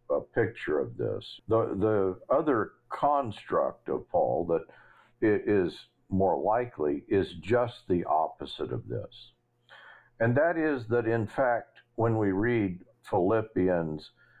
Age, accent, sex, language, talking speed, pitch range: 50-69, American, male, English, 125 wpm, 90-120 Hz